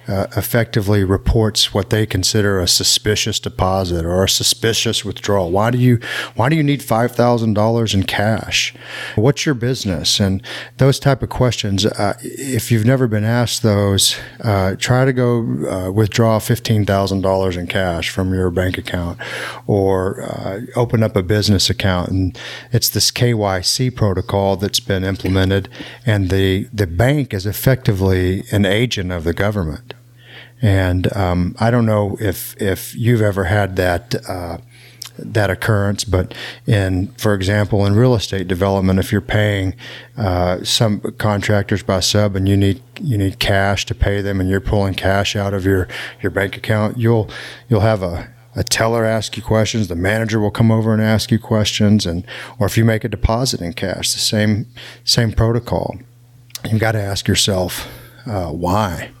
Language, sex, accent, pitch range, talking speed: English, male, American, 95-120 Hz, 165 wpm